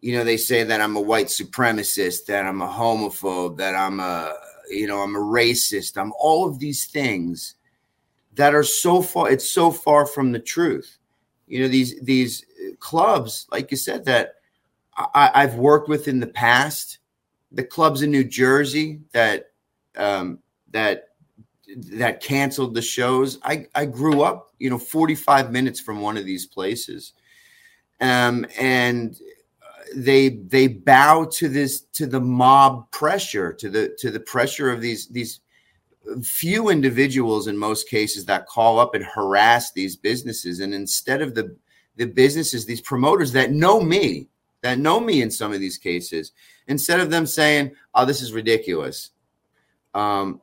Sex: male